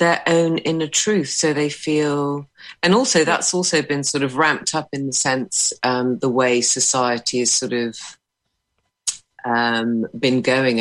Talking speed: 160 wpm